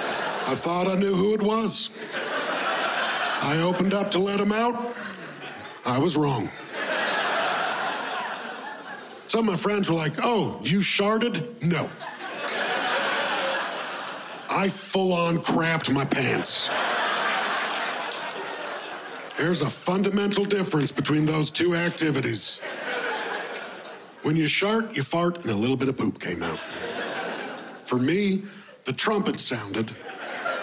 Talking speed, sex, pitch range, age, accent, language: 115 wpm, male, 130-195 Hz, 50-69, American, English